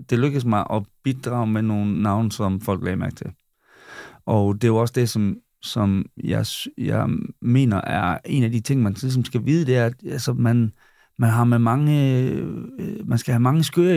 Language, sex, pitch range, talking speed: Danish, male, 110-140 Hz, 200 wpm